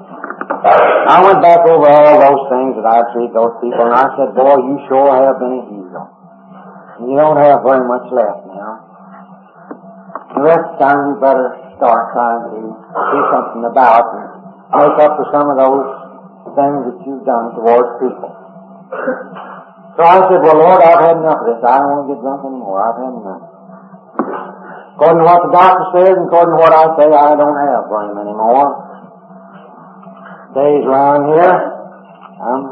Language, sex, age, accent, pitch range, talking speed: English, male, 60-79, American, 120-150 Hz, 180 wpm